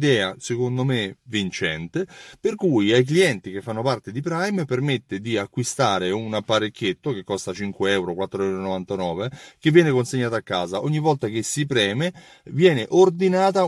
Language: Italian